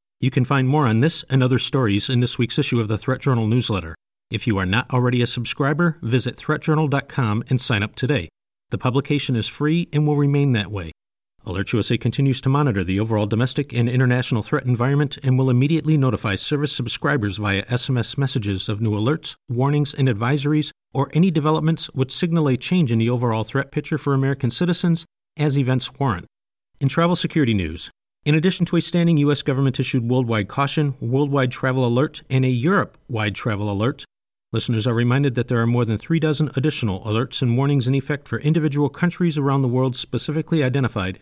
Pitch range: 115-145 Hz